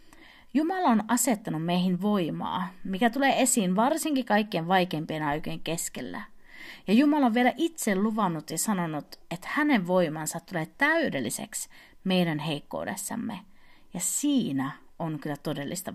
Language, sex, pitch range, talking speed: Finnish, female, 165-240 Hz, 125 wpm